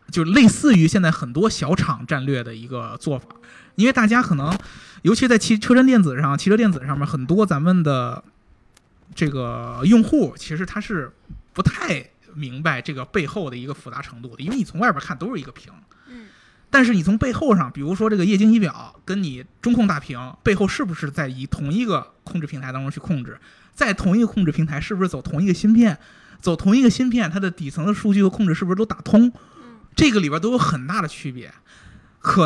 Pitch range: 145-210 Hz